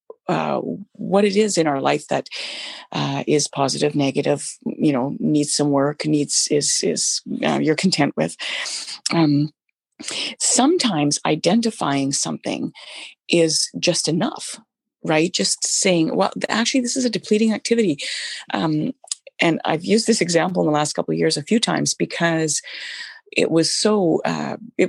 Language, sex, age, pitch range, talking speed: English, female, 40-59, 145-225 Hz, 150 wpm